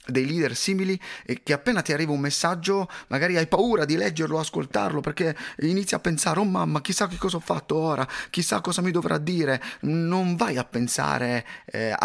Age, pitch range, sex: 30-49, 120-190 Hz, male